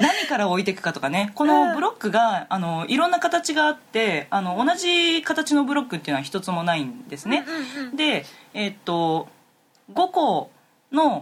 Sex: female